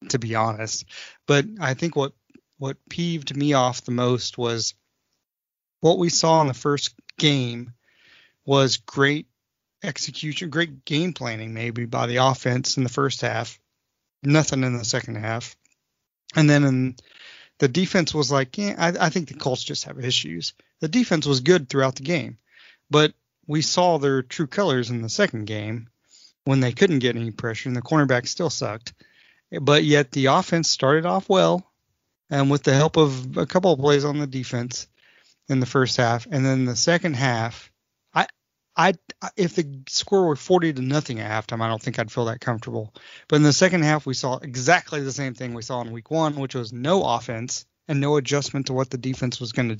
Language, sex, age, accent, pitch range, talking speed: English, male, 30-49, American, 120-155 Hz, 190 wpm